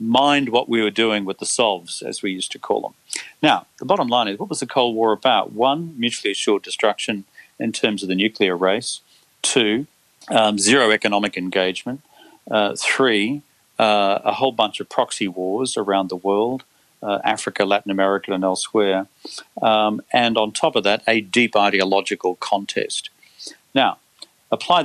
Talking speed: 170 wpm